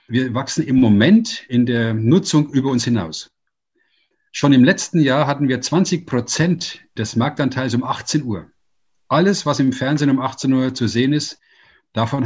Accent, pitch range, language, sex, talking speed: German, 110-145 Hz, German, male, 165 wpm